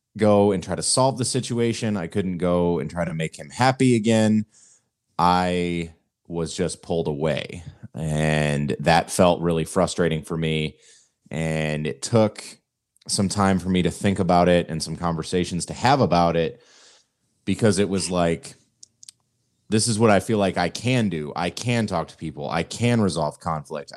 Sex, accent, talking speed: male, American, 175 wpm